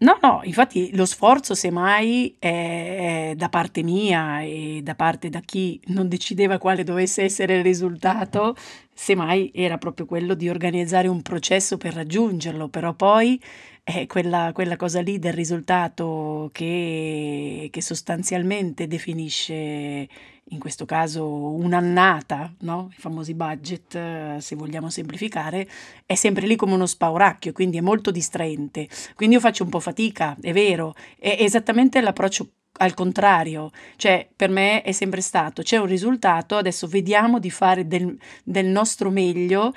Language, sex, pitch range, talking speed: Italian, female, 165-200 Hz, 145 wpm